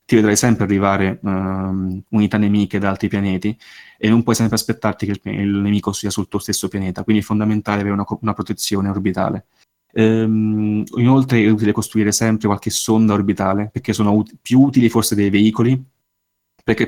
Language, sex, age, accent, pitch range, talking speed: Italian, male, 20-39, native, 100-110 Hz, 165 wpm